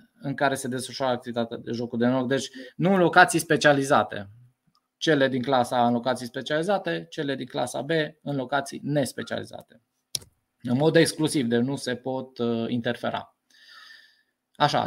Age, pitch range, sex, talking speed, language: 20-39, 125-165 Hz, male, 150 wpm, Romanian